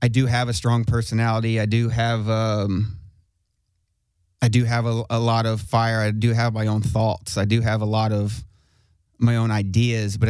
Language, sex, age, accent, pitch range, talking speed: English, male, 30-49, American, 105-120 Hz, 200 wpm